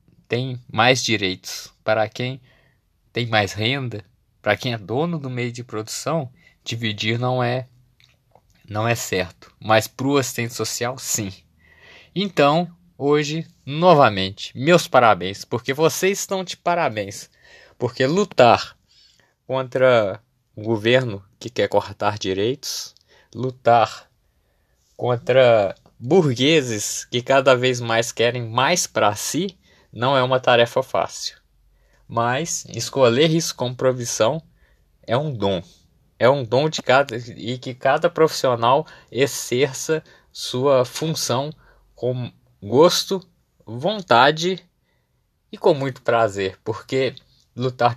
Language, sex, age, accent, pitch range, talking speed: Portuguese, male, 20-39, Brazilian, 115-160 Hz, 115 wpm